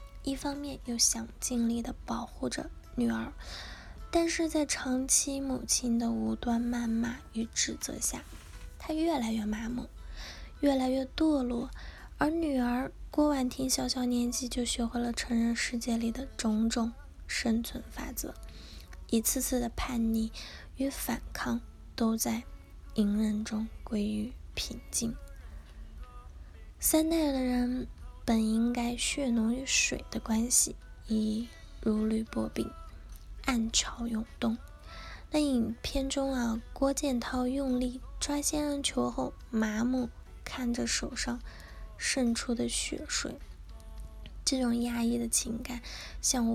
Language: Chinese